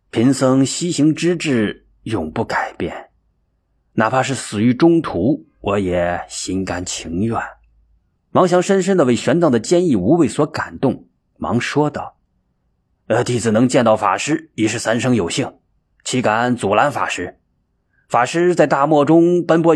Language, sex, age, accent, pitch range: Chinese, male, 20-39, native, 110-165 Hz